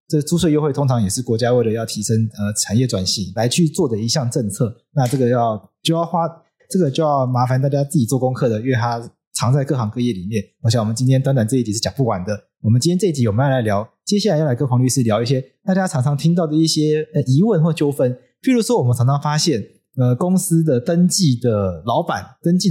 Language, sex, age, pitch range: Chinese, male, 30-49, 115-155 Hz